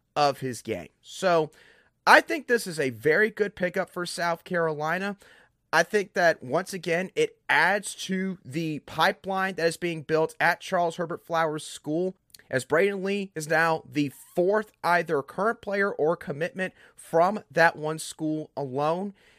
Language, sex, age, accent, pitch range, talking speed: English, male, 30-49, American, 155-210 Hz, 160 wpm